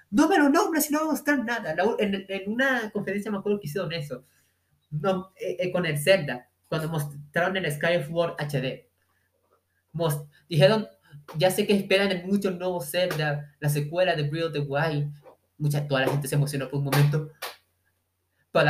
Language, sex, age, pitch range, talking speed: Spanish, male, 20-39, 140-195 Hz, 160 wpm